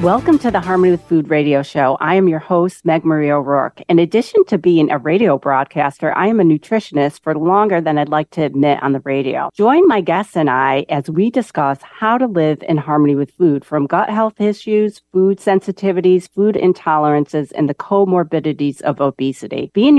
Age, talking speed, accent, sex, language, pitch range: 40-59, 195 wpm, American, female, English, 105-170 Hz